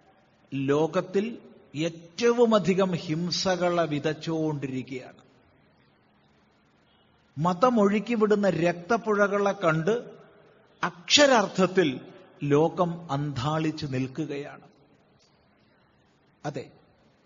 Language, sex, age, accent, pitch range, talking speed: Malayalam, male, 50-69, native, 145-210 Hz, 40 wpm